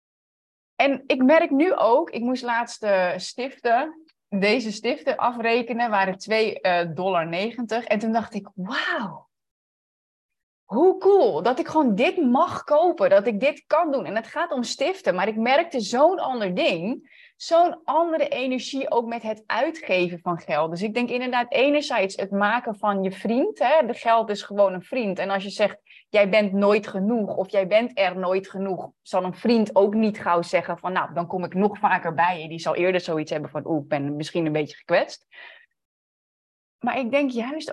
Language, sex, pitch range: Dutch, female, 195-260 Hz